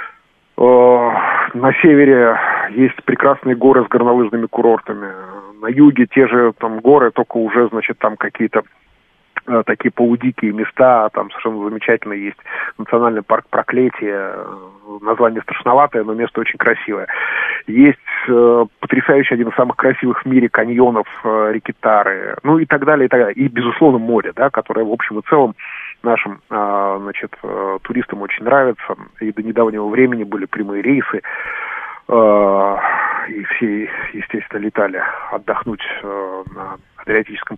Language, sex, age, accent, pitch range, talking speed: Russian, male, 30-49, native, 110-130 Hz, 135 wpm